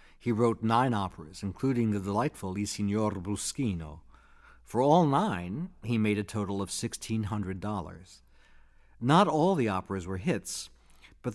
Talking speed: 135 wpm